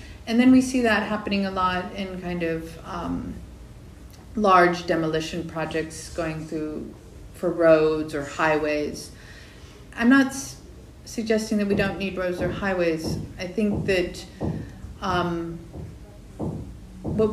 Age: 40-59